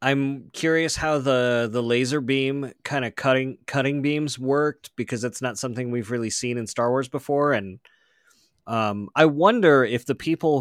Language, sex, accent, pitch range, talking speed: English, male, American, 120-145 Hz, 175 wpm